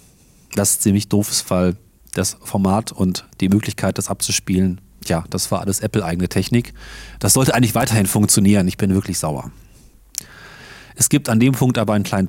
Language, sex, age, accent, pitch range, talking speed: German, male, 40-59, German, 95-120 Hz, 170 wpm